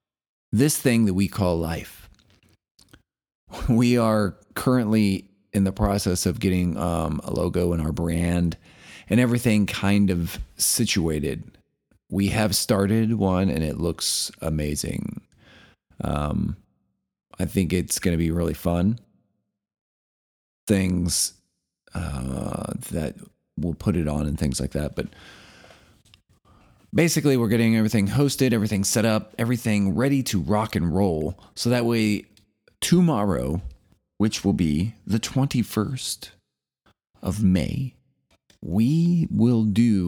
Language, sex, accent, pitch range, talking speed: English, male, American, 85-110 Hz, 125 wpm